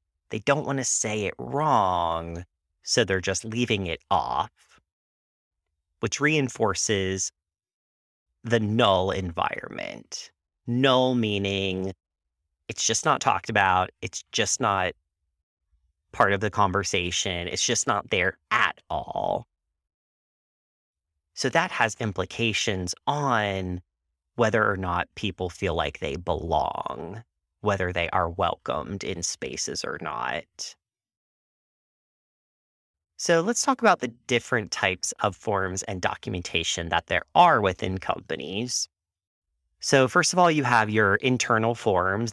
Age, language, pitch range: 30-49, English, 80-110 Hz